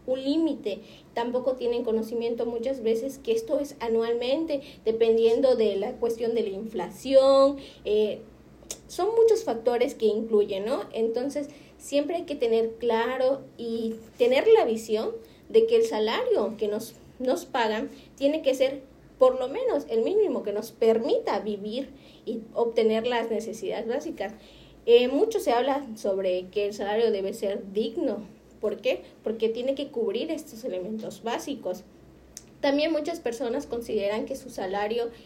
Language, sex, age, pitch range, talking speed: Spanish, female, 30-49, 220-275 Hz, 150 wpm